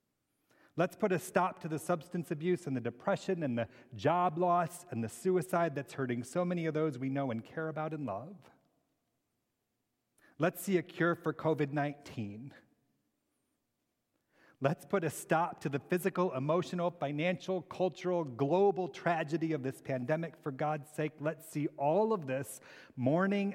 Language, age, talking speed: English, 40-59, 160 wpm